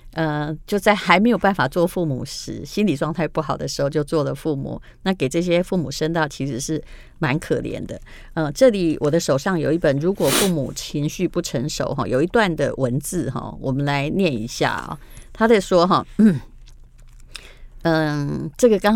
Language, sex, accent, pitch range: Chinese, female, American, 145-195 Hz